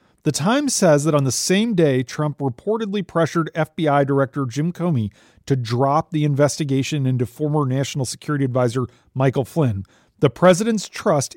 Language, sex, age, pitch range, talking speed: English, male, 40-59, 135-165 Hz, 155 wpm